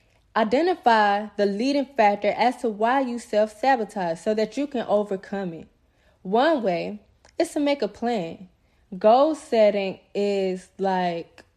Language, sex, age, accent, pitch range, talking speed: English, female, 20-39, American, 185-235 Hz, 135 wpm